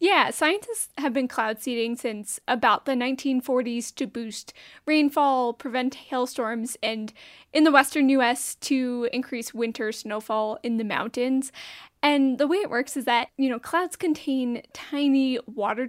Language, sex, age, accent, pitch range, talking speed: English, female, 10-29, American, 245-285 Hz, 150 wpm